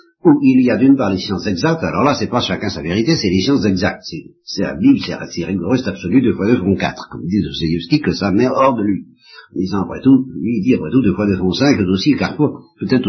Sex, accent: male, French